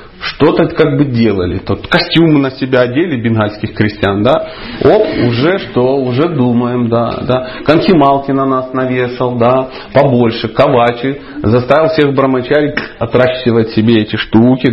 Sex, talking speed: male, 130 wpm